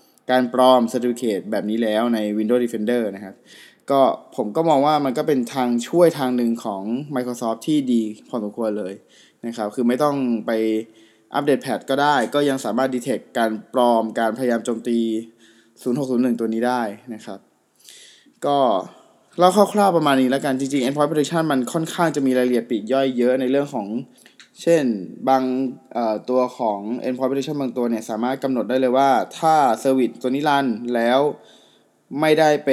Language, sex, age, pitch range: Thai, male, 20-39, 115-135 Hz